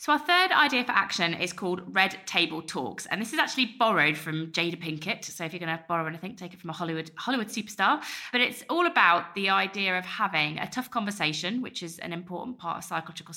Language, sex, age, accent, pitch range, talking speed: English, female, 20-39, British, 160-205 Hz, 230 wpm